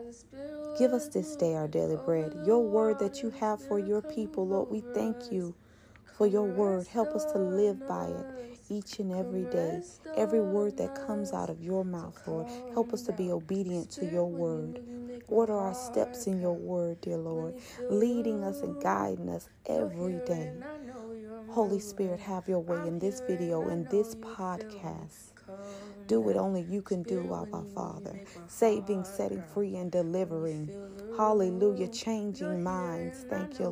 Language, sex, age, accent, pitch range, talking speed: English, female, 40-59, American, 180-220 Hz, 165 wpm